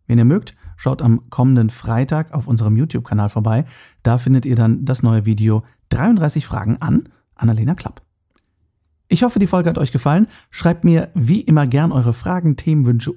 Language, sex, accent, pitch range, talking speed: German, male, German, 115-145 Hz, 175 wpm